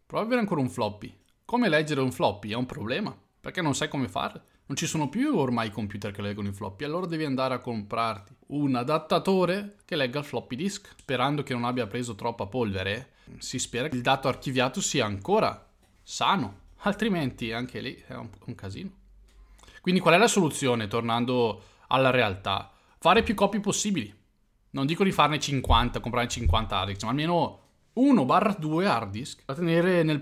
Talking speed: 185 wpm